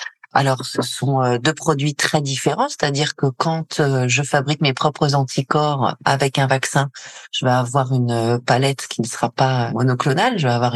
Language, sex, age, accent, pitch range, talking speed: French, female, 40-59, French, 120-140 Hz, 175 wpm